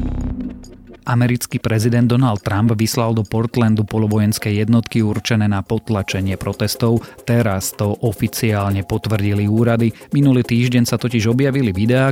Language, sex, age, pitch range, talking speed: Slovak, male, 30-49, 100-120 Hz, 120 wpm